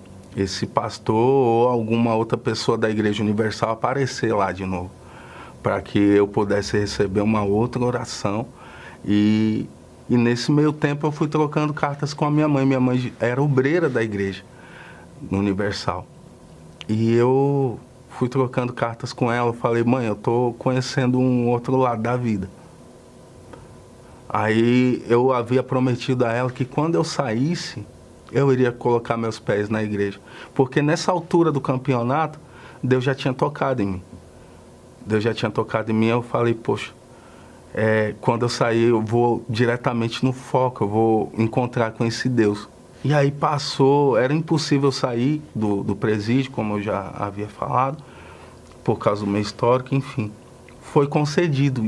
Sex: male